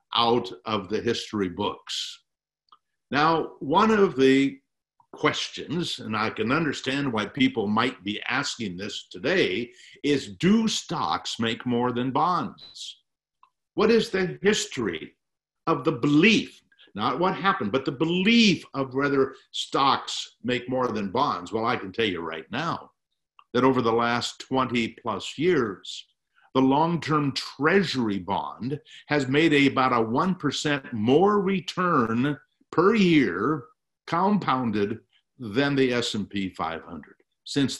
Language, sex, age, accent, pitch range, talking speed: English, male, 50-69, American, 115-165 Hz, 130 wpm